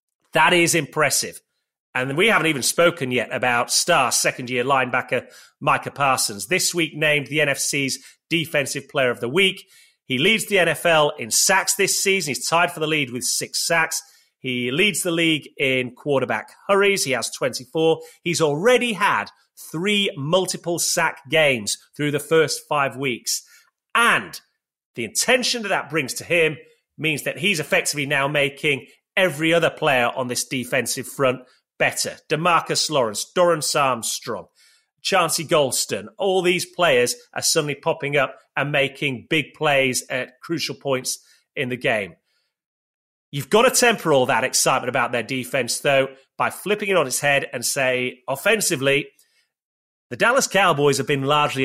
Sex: male